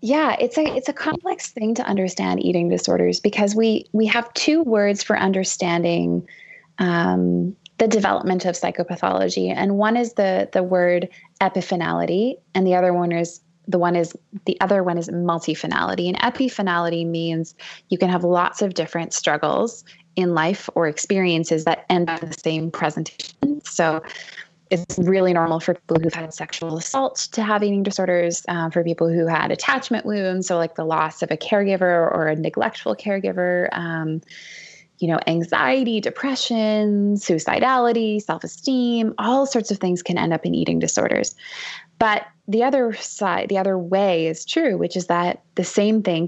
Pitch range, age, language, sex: 165-210 Hz, 20-39, English, female